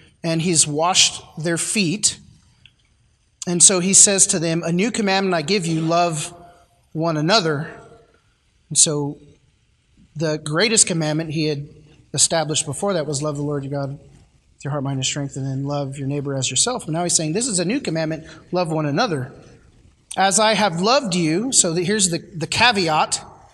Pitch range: 160-210 Hz